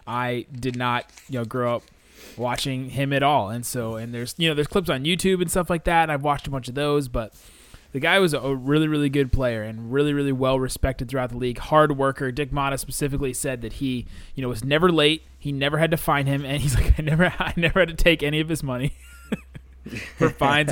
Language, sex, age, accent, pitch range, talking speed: English, male, 20-39, American, 120-150 Hz, 245 wpm